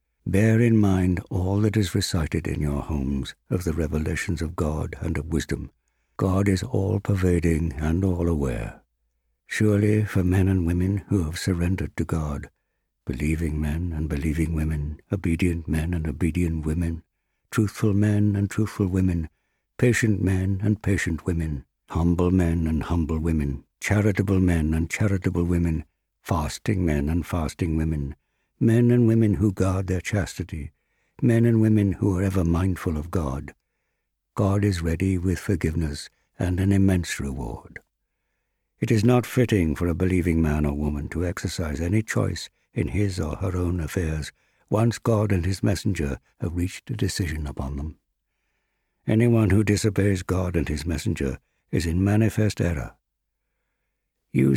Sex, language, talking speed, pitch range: male, English, 150 wpm, 80-100 Hz